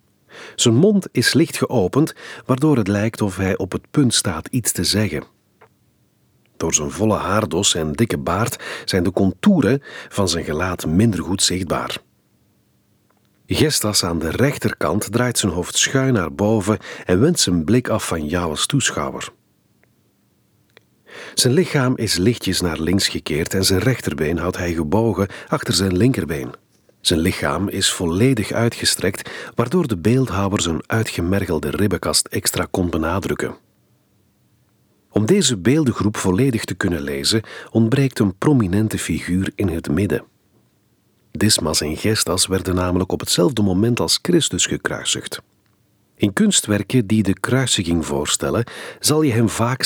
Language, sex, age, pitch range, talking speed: Dutch, male, 50-69, 90-115 Hz, 140 wpm